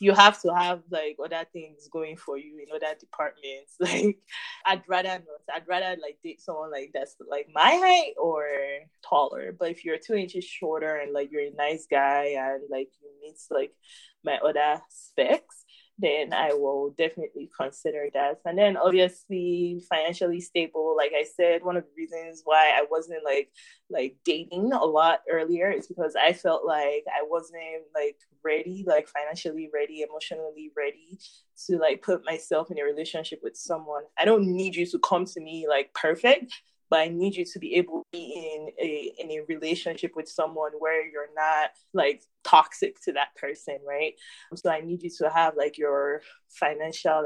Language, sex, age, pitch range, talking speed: English, female, 20-39, 150-190 Hz, 180 wpm